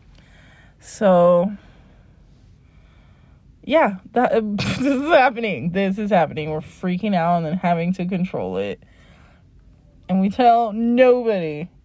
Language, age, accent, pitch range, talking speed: English, 20-39, American, 175-280 Hz, 110 wpm